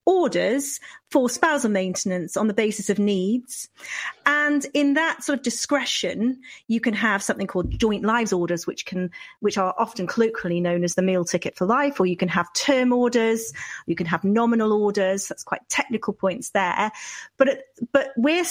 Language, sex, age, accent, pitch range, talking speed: English, female, 40-59, British, 190-240 Hz, 180 wpm